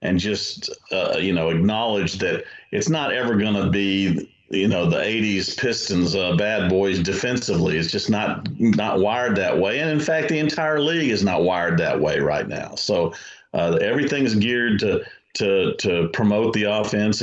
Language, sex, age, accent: English, male, 40-59, American